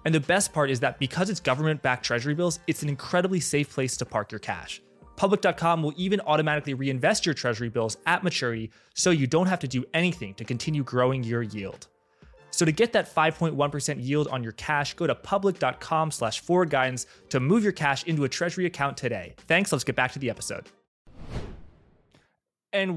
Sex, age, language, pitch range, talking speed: male, 20-39, English, 120-160 Hz, 190 wpm